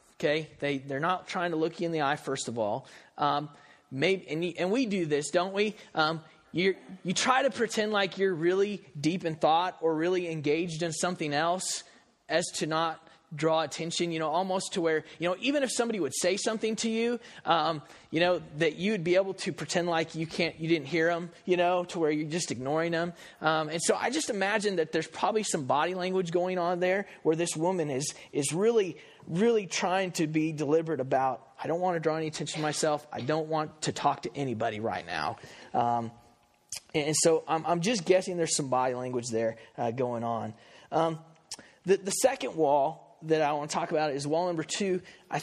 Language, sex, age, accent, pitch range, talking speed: English, male, 30-49, American, 155-185 Hz, 210 wpm